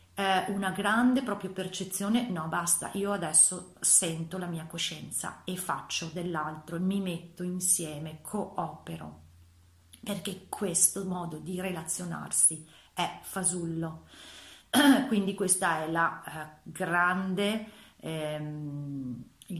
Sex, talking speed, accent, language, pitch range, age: female, 100 wpm, native, Italian, 160-195 Hz, 30-49